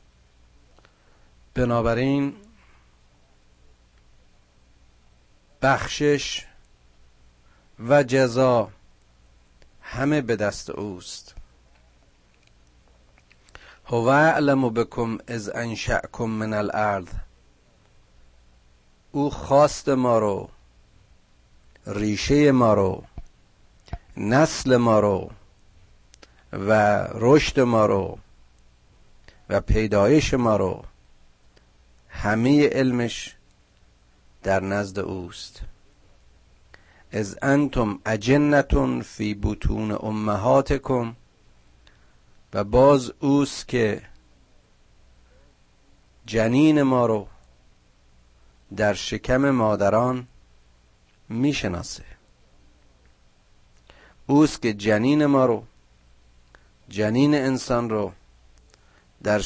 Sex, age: male, 50-69